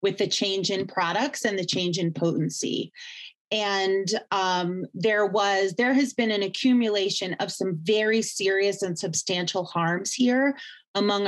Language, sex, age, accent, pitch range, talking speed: English, female, 30-49, American, 180-240 Hz, 150 wpm